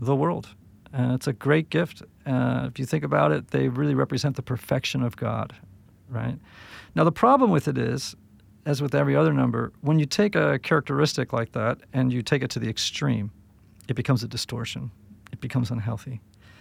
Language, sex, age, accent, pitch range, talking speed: English, male, 40-59, American, 105-145 Hz, 195 wpm